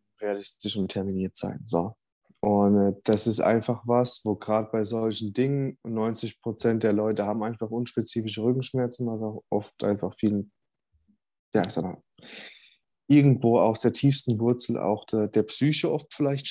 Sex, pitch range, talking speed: male, 105-125 Hz, 155 wpm